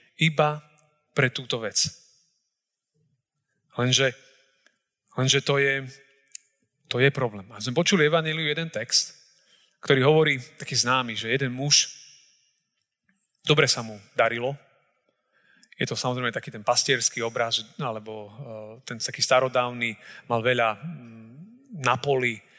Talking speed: 110 wpm